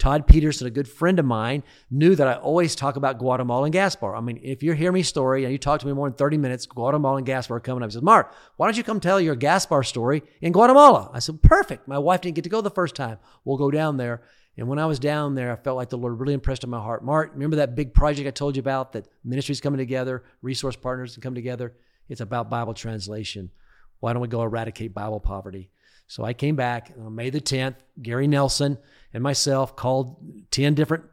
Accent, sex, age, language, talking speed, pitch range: American, male, 40-59, English, 245 wpm, 125-150 Hz